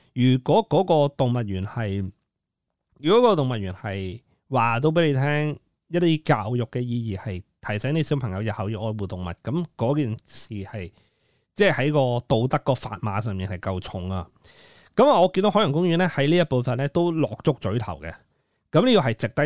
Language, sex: Chinese, male